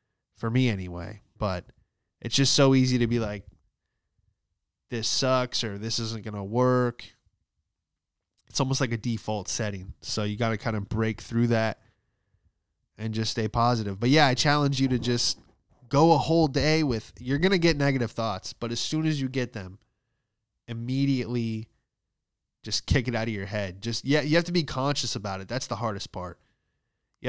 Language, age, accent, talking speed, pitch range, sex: English, 20-39, American, 185 wpm, 105-140 Hz, male